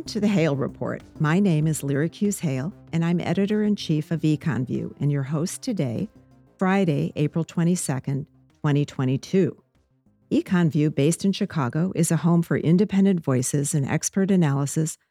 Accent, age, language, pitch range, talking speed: American, 50-69, English, 135-175 Hz, 140 wpm